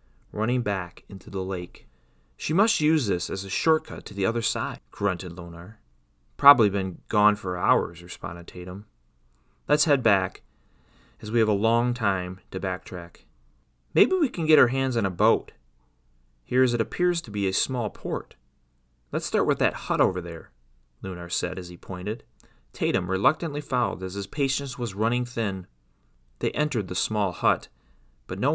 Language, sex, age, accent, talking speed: English, male, 30-49, American, 170 wpm